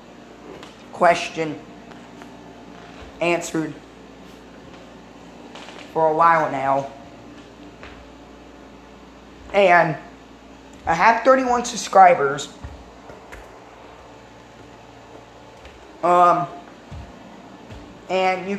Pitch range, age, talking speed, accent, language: 160-200 Hz, 20-39, 45 wpm, American, English